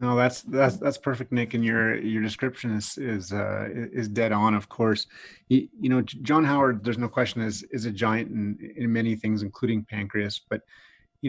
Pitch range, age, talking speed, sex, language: 110-125 Hz, 30-49, 200 wpm, male, English